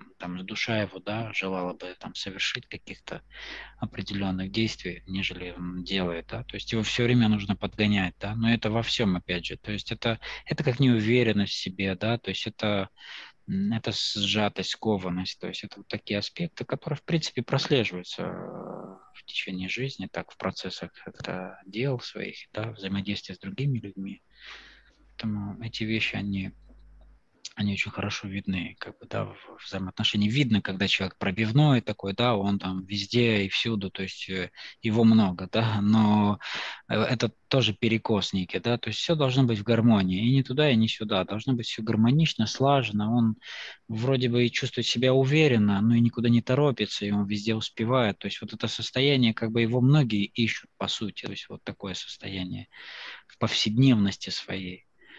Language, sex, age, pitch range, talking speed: Russian, male, 20-39, 100-120 Hz, 170 wpm